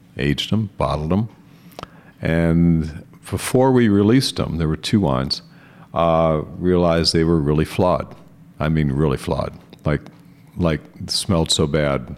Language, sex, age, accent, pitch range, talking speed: English, male, 60-79, American, 80-110 Hz, 140 wpm